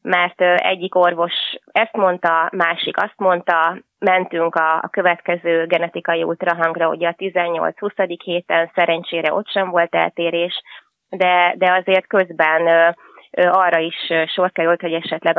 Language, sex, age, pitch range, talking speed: Hungarian, female, 20-39, 165-185 Hz, 135 wpm